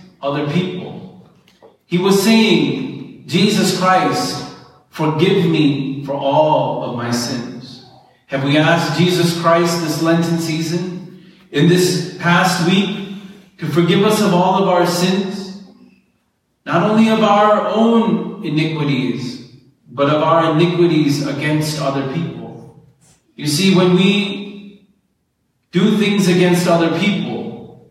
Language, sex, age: English, male, 30-49